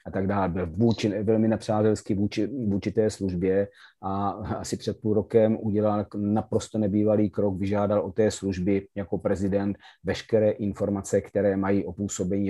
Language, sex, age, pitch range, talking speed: Slovak, male, 30-49, 95-110 Hz, 150 wpm